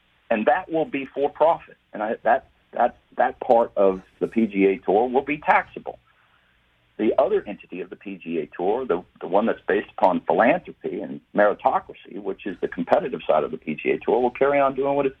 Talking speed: 195 wpm